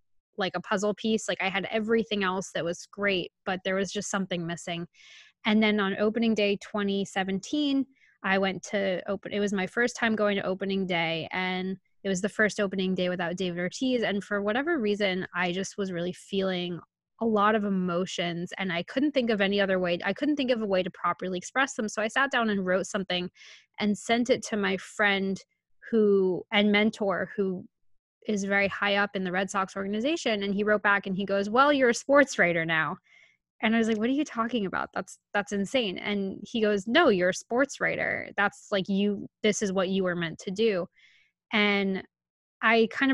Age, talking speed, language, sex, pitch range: 20-39, 210 wpm, English, female, 190-215 Hz